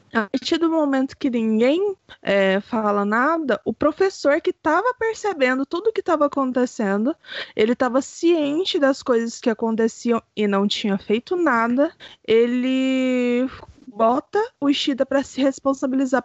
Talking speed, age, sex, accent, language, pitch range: 135 wpm, 20-39, female, Brazilian, Portuguese, 235-315 Hz